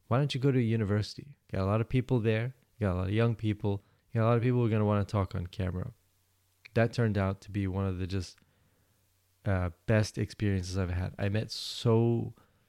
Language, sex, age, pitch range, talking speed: English, male, 20-39, 95-110 Hz, 240 wpm